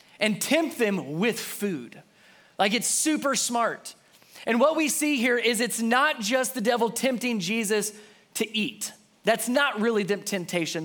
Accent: American